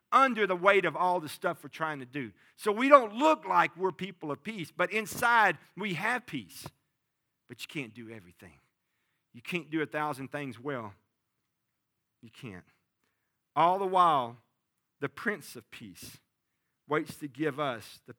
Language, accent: English, American